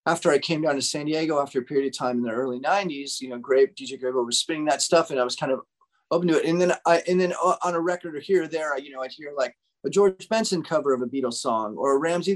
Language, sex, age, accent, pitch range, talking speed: English, male, 30-49, American, 130-170 Hz, 295 wpm